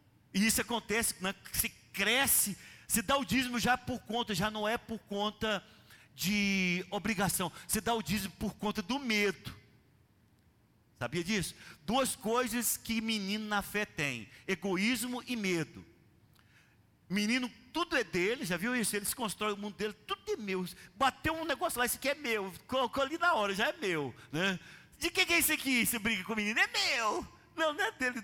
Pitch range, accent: 170-255 Hz, Brazilian